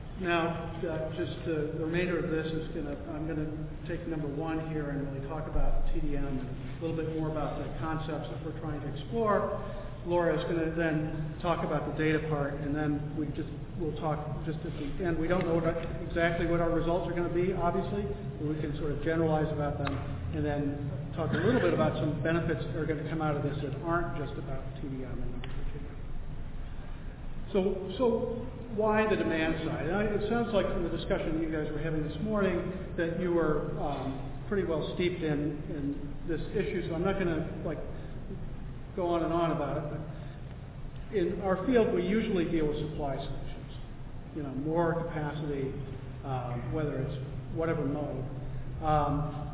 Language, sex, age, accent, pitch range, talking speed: English, male, 50-69, American, 145-170 Hz, 195 wpm